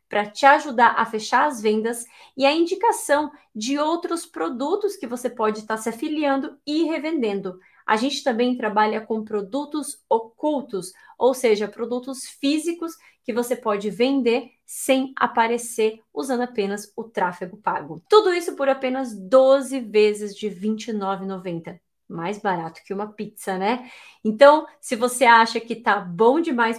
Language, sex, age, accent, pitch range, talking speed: Portuguese, female, 20-39, Brazilian, 215-275 Hz, 145 wpm